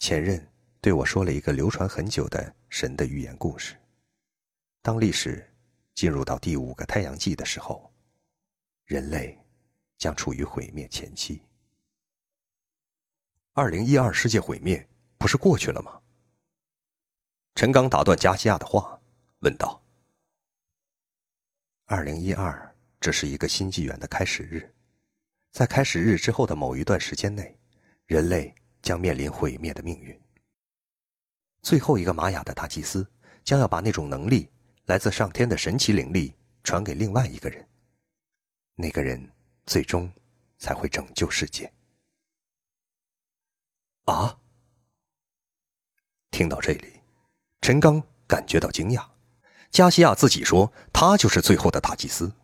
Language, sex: Chinese, male